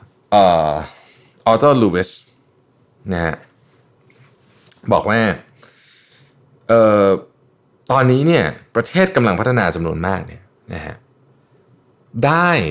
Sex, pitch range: male, 95-130 Hz